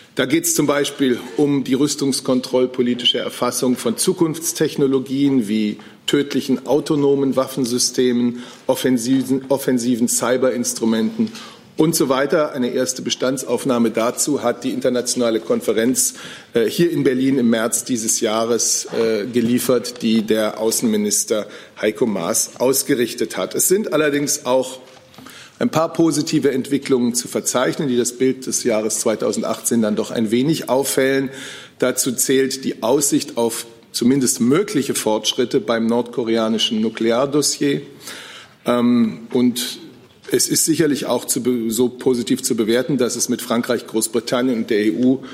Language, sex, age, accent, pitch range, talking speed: German, male, 40-59, German, 115-135 Hz, 125 wpm